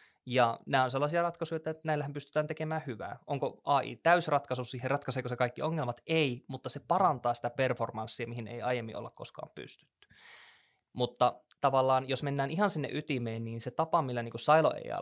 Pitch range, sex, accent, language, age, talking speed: 120-155 Hz, male, native, Finnish, 20-39, 170 wpm